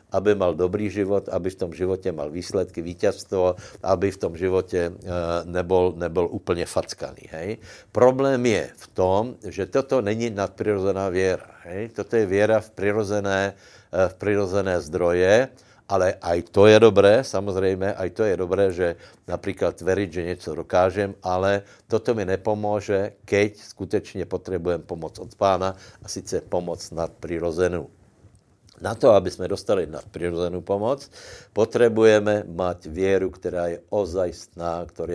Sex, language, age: male, Slovak, 60-79